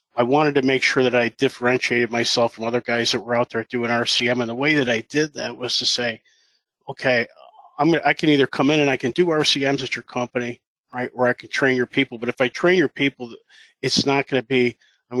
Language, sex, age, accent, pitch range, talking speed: English, male, 40-59, American, 115-130 Hz, 240 wpm